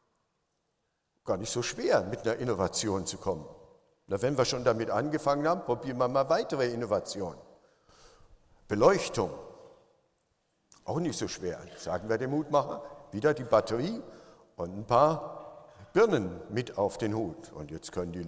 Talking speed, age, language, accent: 145 wpm, 60-79, English, German